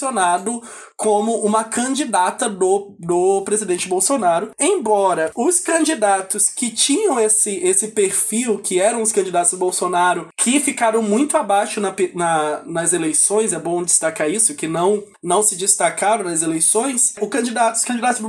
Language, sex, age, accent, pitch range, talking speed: Portuguese, male, 20-39, Brazilian, 185-245 Hz, 150 wpm